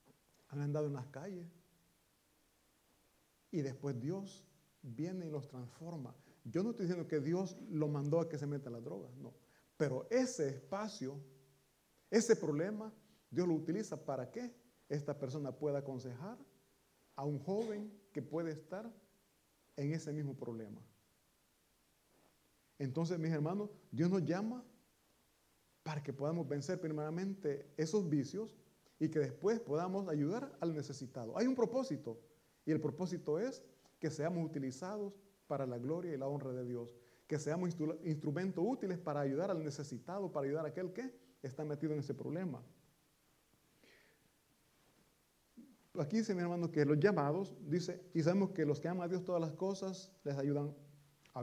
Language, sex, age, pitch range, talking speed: Italian, male, 40-59, 140-185 Hz, 150 wpm